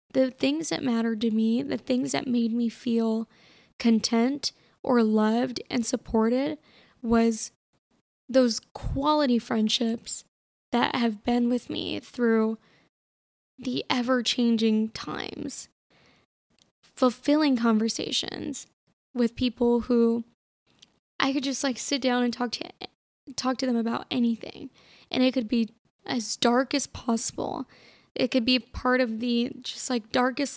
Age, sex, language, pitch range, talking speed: 10-29, female, English, 230-260 Hz, 130 wpm